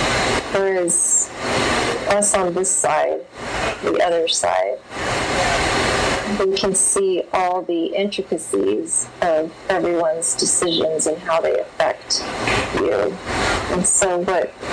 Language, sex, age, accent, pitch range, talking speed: English, female, 30-49, American, 170-200 Hz, 100 wpm